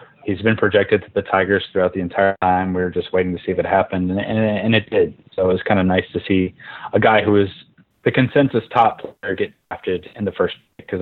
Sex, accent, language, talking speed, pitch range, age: male, American, English, 250 wpm, 95-110 Hz, 20-39